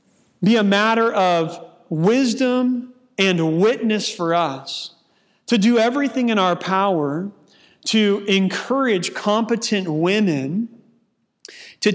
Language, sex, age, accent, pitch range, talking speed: English, male, 40-59, American, 175-220 Hz, 100 wpm